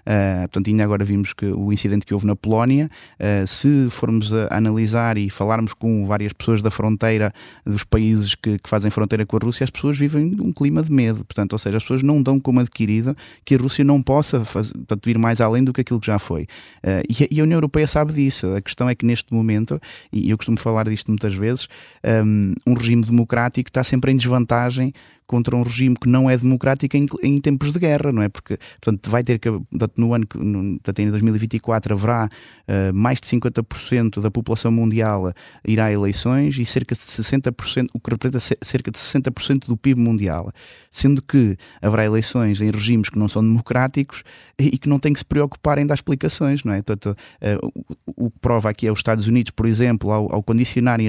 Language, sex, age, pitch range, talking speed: Portuguese, male, 20-39, 105-130 Hz, 205 wpm